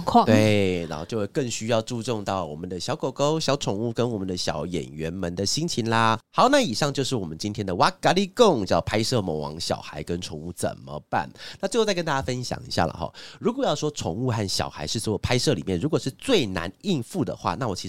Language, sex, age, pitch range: Chinese, male, 30-49, 90-135 Hz